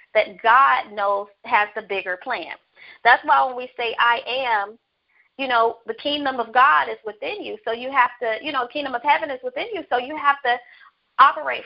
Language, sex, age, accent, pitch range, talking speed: English, female, 30-49, American, 205-265 Hz, 205 wpm